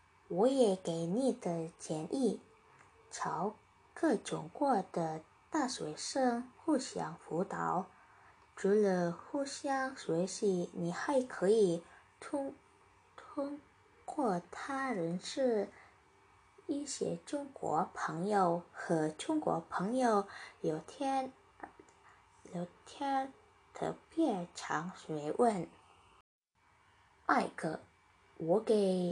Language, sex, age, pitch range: Malay, female, 10-29, 175-275 Hz